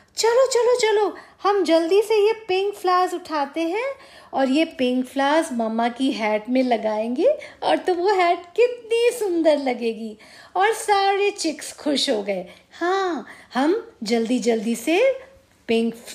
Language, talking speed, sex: Hindi, 145 wpm, female